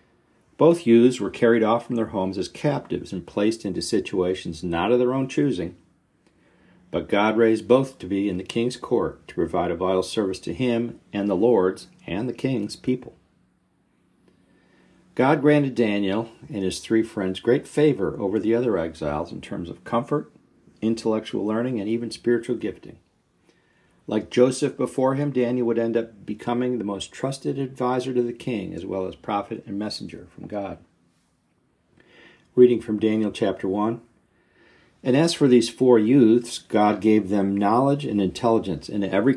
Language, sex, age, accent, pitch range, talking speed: English, male, 50-69, American, 95-120 Hz, 165 wpm